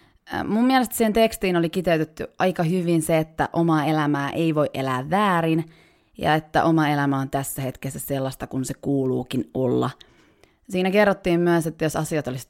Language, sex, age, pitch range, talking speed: Finnish, female, 20-39, 150-185 Hz, 170 wpm